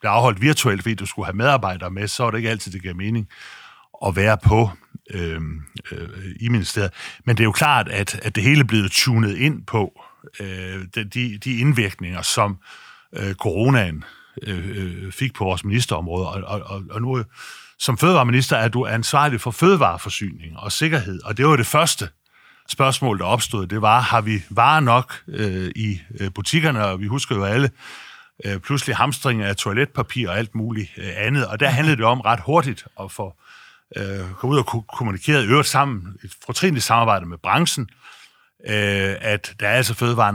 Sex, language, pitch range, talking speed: male, Danish, 95-125 Hz, 175 wpm